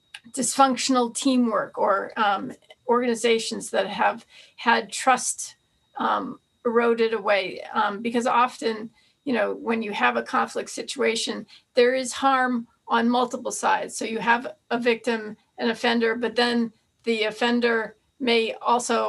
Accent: American